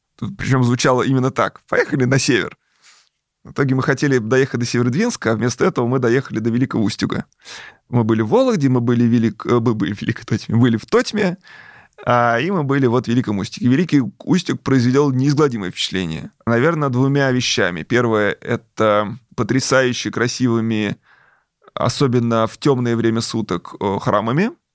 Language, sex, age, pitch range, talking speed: Russian, male, 20-39, 110-130 Hz, 150 wpm